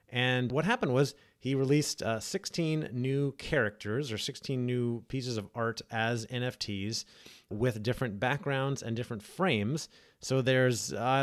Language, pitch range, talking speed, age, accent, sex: English, 105-130 Hz, 145 wpm, 30-49, American, male